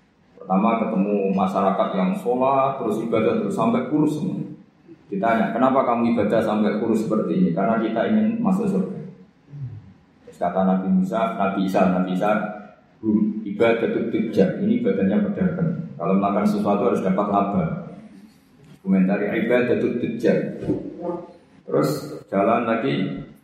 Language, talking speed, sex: Malay, 130 wpm, male